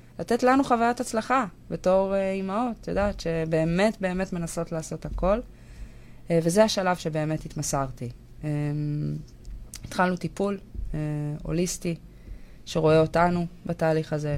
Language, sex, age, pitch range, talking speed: Hebrew, female, 20-39, 155-180 Hz, 115 wpm